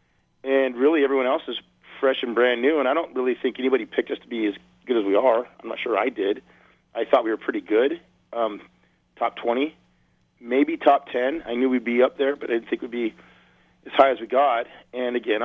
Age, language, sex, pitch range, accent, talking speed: 40-59, English, male, 105-135 Hz, American, 235 wpm